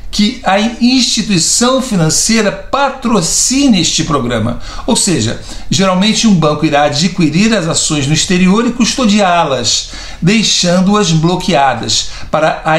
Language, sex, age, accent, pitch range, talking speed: Portuguese, male, 60-79, Brazilian, 160-210 Hz, 115 wpm